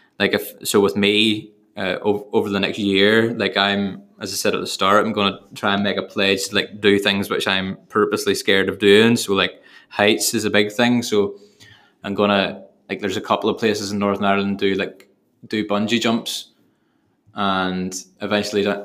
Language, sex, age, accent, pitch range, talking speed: English, male, 20-39, British, 100-105 Hz, 200 wpm